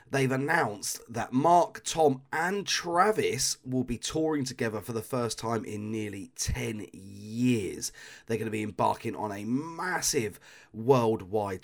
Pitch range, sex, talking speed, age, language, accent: 95-130 Hz, male, 145 wpm, 30-49, English, British